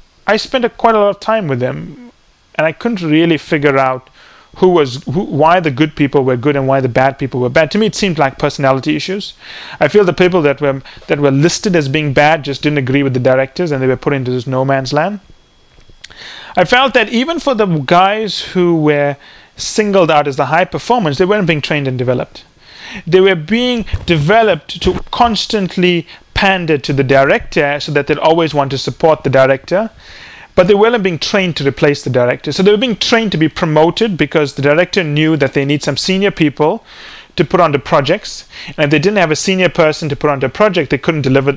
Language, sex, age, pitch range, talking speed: English, male, 30-49, 140-190 Hz, 220 wpm